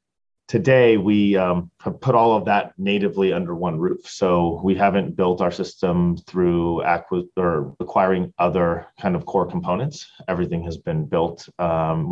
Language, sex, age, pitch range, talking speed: English, male, 30-49, 85-95 Hz, 160 wpm